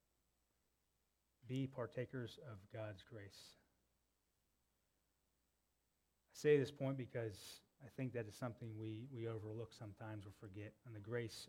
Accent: American